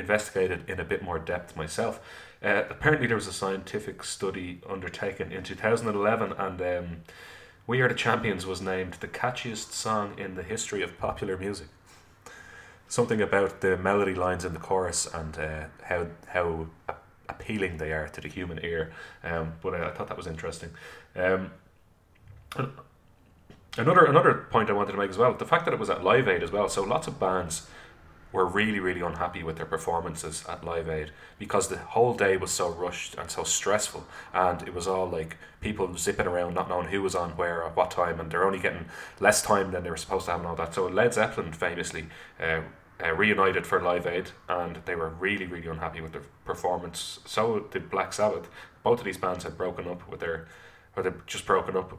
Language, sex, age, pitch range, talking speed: English, male, 30-49, 85-95 Hz, 200 wpm